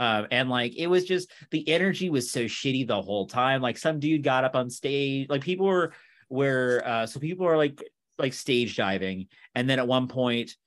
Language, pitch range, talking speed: English, 120-145 Hz, 215 wpm